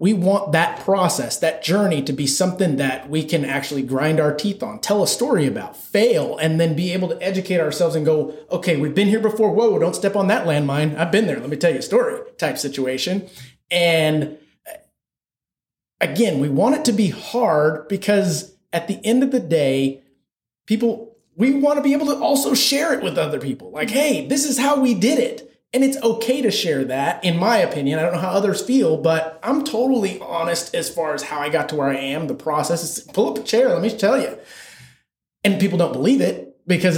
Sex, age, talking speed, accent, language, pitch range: male, 30-49, 220 wpm, American, English, 155-210 Hz